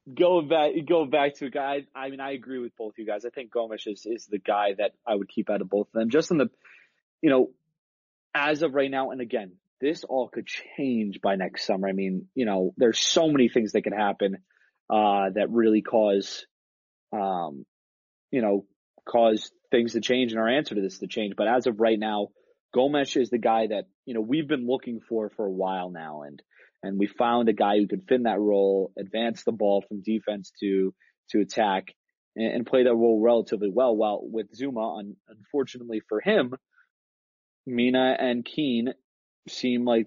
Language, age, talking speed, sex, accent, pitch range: English, 30-49, 205 wpm, male, American, 100-125 Hz